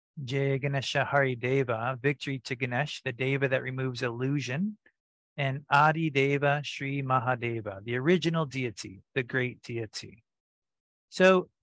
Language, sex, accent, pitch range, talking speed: English, male, American, 125-145 Hz, 125 wpm